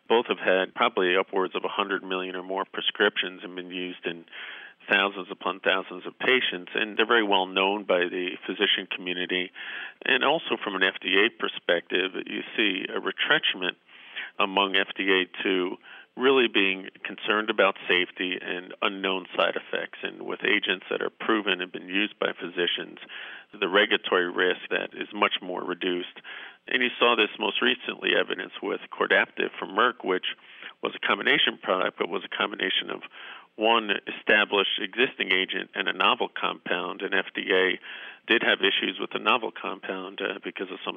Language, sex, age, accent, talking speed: English, male, 50-69, American, 165 wpm